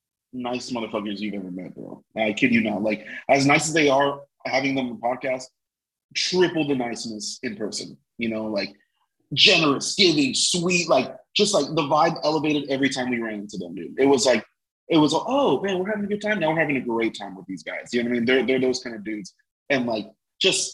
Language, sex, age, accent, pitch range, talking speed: English, male, 30-49, American, 125-180 Hz, 230 wpm